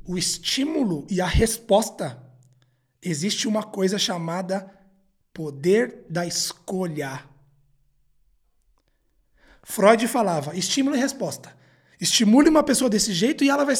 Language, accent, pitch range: Portuguese, Brazilian, 165-235 Hz